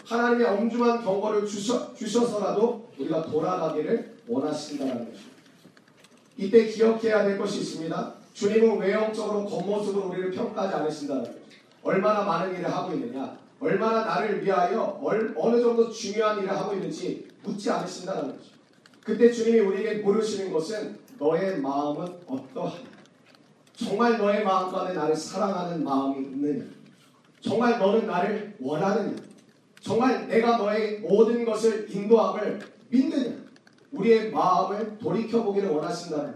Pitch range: 195-230 Hz